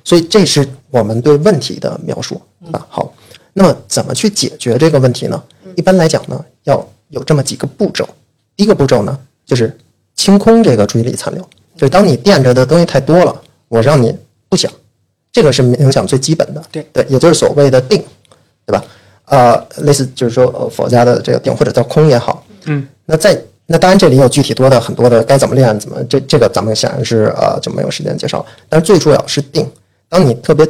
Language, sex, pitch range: Chinese, male, 125-160 Hz